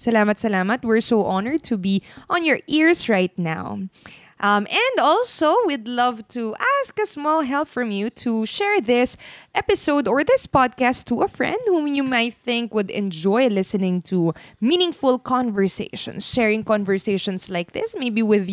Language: Filipino